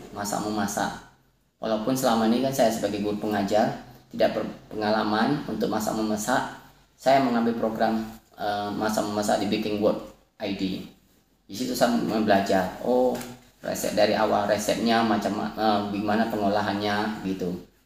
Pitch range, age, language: 105-125 Hz, 20-39, Indonesian